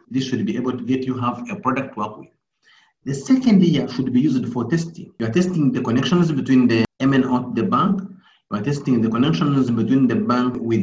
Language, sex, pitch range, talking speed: English, male, 130-190 Hz, 225 wpm